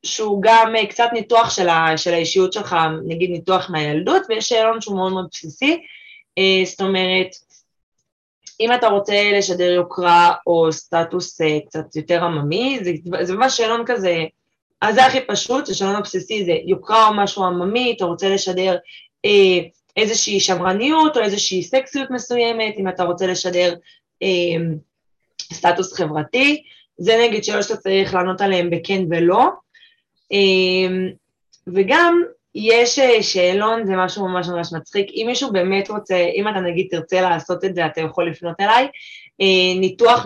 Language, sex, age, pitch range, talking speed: Hebrew, female, 20-39, 180-230 Hz, 150 wpm